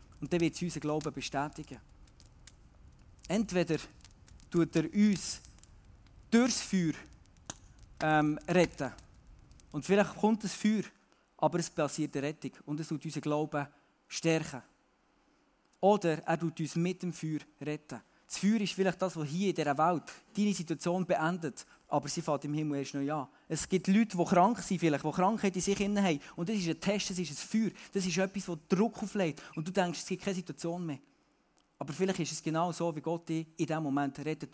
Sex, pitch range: male, 145-190 Hz